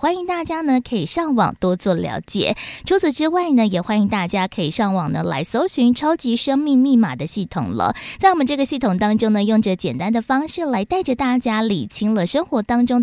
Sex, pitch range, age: female, 190-265 Hz, 20-39